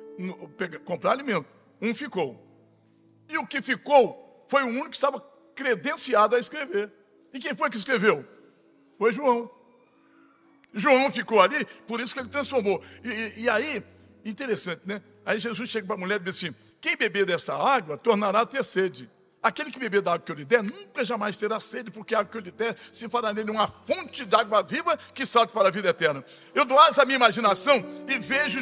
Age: 60-79